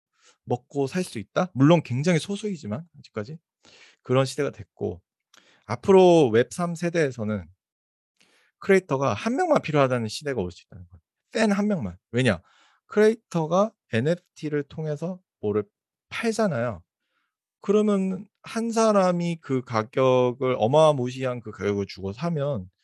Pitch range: 105-170 Hz